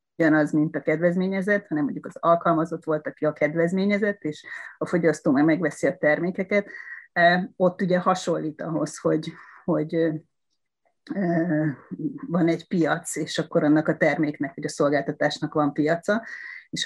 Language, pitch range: Hungarian, 155-185 Hz